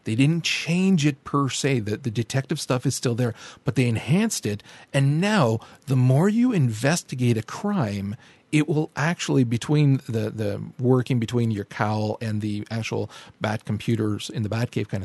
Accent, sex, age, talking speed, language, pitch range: American, male, 40-59, 180 wpm, English, 115-150 Hz